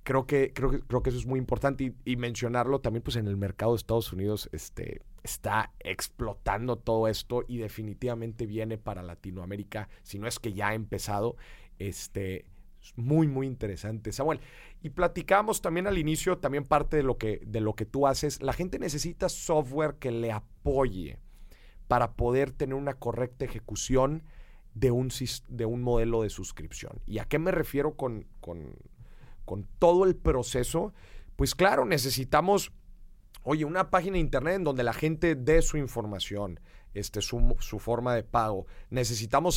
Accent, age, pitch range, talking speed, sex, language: Mexican, 40-59, 110-145 Hz, 170 wpm, male, Spanish